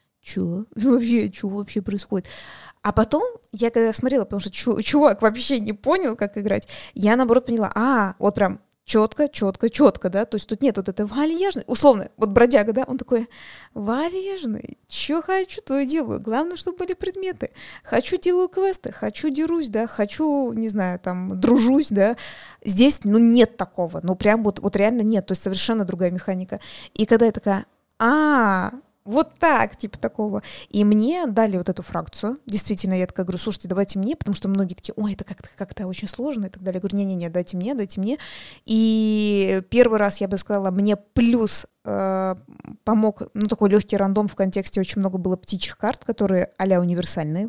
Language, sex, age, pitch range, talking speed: Russian, female, 20-39, 200-245 Hz, 185 wpm